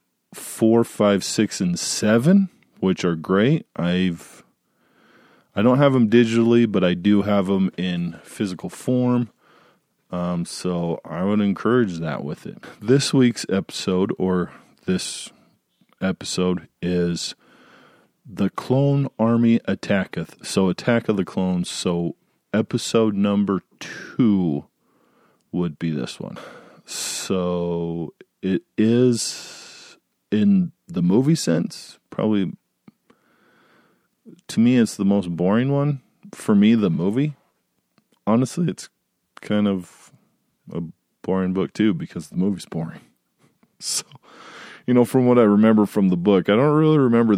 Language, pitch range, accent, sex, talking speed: English, 95-125 Hz, American, male, 125 wpm